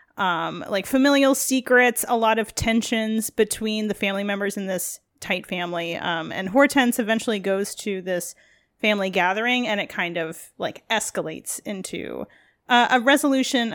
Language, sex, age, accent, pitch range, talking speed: English, female, 30-49, American, 205-250 Hz, 155 wpm